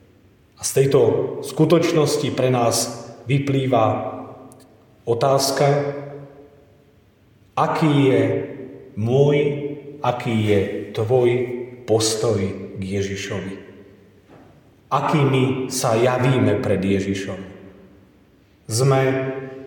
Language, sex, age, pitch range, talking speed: Slovak, male, 40-59, 110-145 Hz, 70 wpm